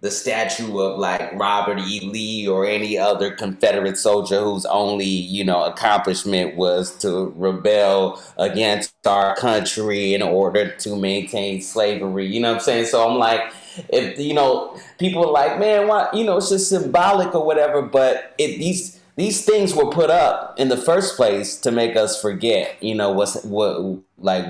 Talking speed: 175 wpm